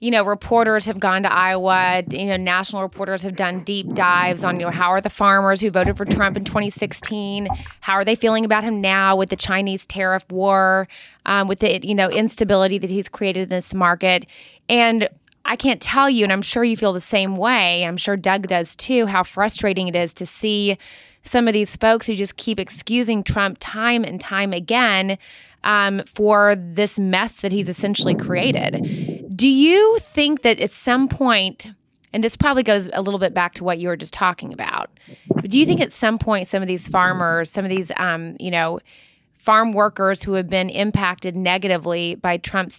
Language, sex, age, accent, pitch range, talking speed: English, female, 20-39, American, 185-215 Hz, 205 wpm